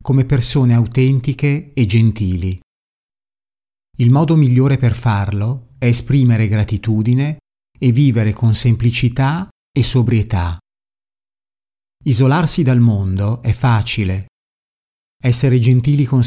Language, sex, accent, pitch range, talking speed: Italian, male, native, 105-130 Hz, 100 wpm